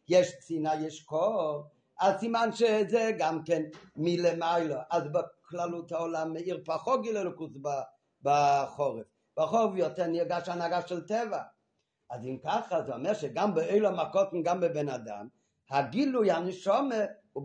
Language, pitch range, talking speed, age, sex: Hebrew, 150-200 Hz, 145 wpm, 50-69, male